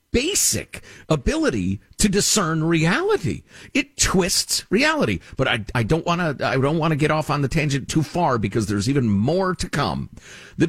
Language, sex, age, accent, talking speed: English, male, 50-69, American, 175 wpm